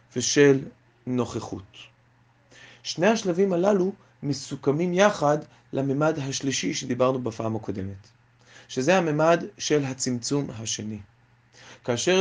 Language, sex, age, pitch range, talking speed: English, male, 30-49, 120-155 Hz, 90 wpm